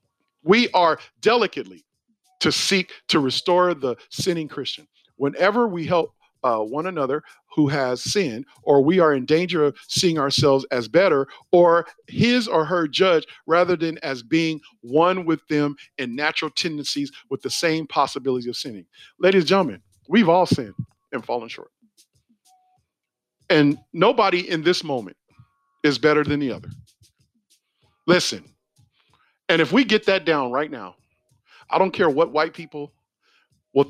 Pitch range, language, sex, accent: 135-175 Hz, English, male, American